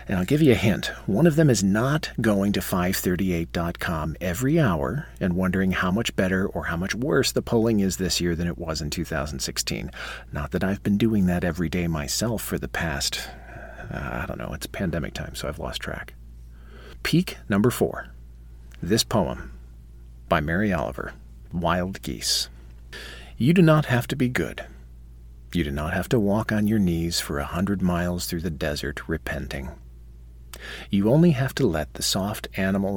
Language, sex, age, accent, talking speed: English, male, 50-69, American, 180 wpm